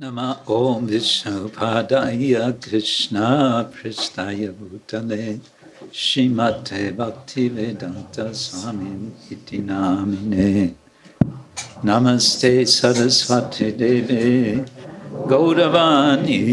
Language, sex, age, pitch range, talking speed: English, male, 60-79, 110-140 Hz, 50 wpm